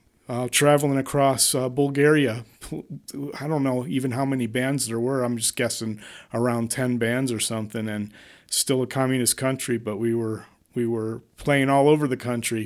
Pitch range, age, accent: 120-145 Hz, 40-59, American